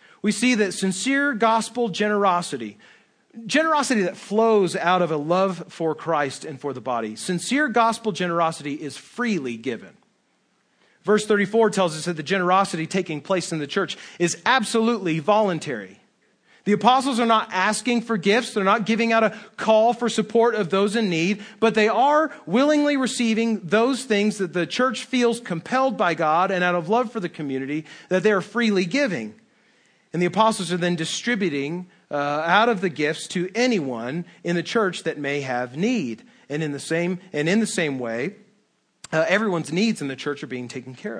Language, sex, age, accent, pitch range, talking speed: English, male, 40-59, American, 160-225 Hz, 180 wpm